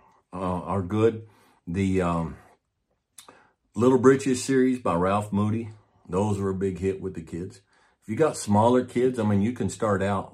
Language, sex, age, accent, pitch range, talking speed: English, male, 50-69, American, 80-100 Hz, 175 wpm